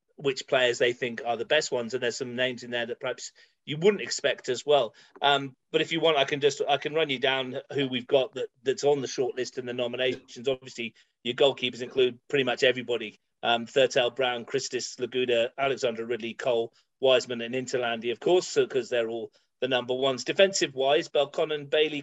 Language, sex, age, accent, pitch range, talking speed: English, male, 40-59, British, 125-200 Hz, 205 wpm